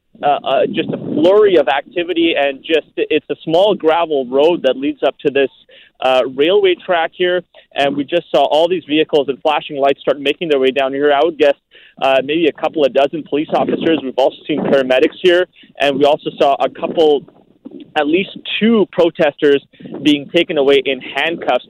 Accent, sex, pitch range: American, male, 140-180 Hz